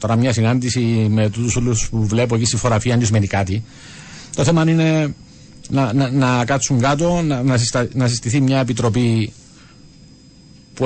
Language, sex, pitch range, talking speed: Greek, male, 110-145 Hz, 155 wpm